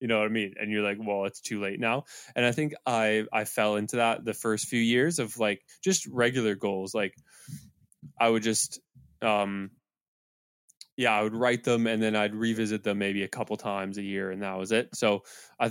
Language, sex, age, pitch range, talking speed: English, male, 20-39, 105-120 Hz, 220 wpm